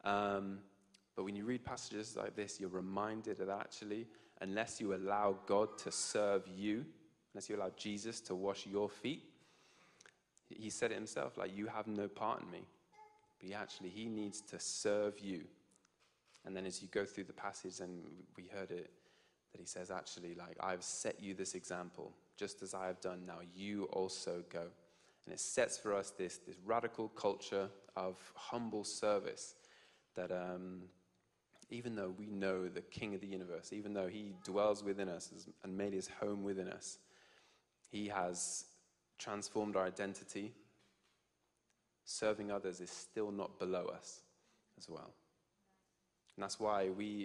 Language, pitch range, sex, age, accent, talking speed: English, 95-105 Hz, male, 20-39, British, 165 wpm